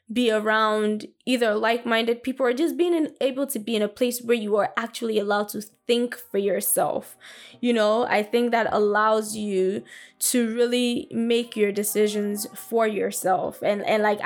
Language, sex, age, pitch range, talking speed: English, female, 10-29, 205-235 Hz, 170 wpm